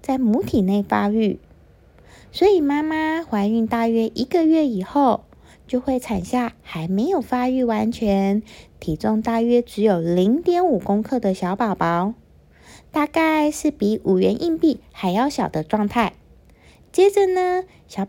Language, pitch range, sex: Chinese, 205-290 Hz, female